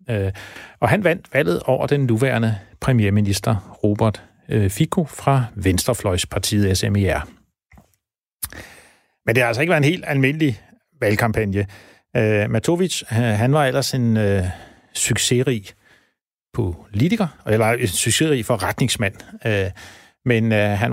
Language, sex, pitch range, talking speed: Danish, male, 105-135 Hz, 105 wpm